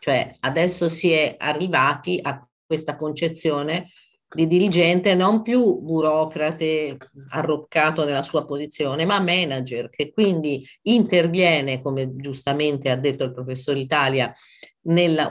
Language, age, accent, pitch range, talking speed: Italian, 50-69, native, 135-185 Hz, 120 wpm